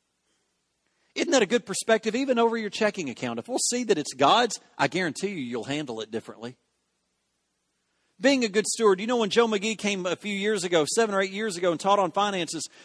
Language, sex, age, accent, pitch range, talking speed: English, male, 40-59, American, 150-215 Hz, 215 wpm